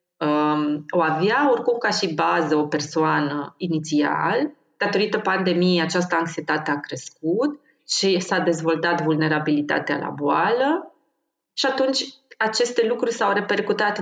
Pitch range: 165-225 Hz